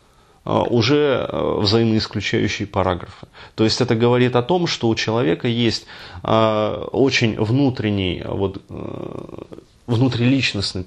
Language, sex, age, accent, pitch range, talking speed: Russian, male, 30-49, native, 100-120 Hz, 95 wpm